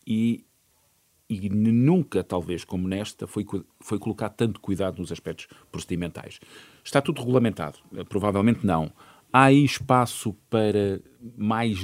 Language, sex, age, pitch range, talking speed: Portuguese, male, 50-69, 95-115 Hz, 120 wpm